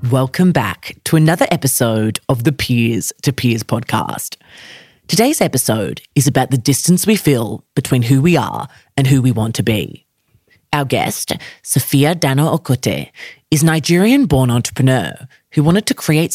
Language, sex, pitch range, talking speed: English, female, 120-155 Hz, 155 wpm